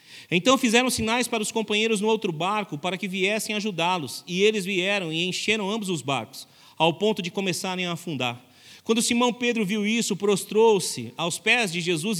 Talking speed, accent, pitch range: 180 wpm, Brazilian, 150-215 Hz